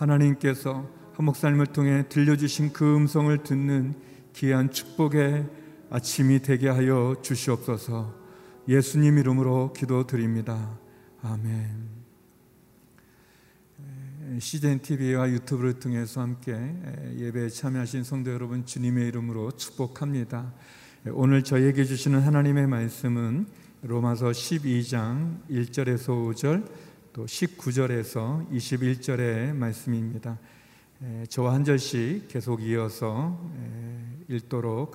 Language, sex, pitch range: Korean, male, 120-140 Hz